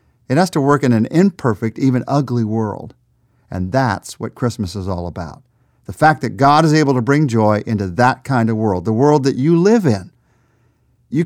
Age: 50-69